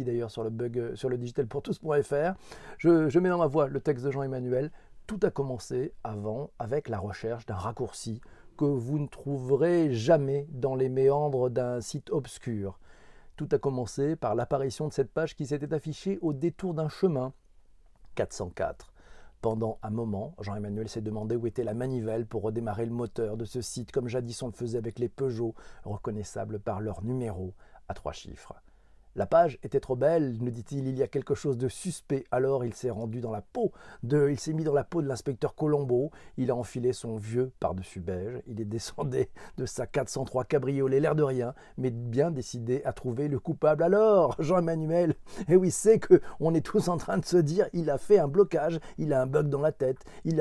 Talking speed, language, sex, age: 200 wpm, French, male, 40-59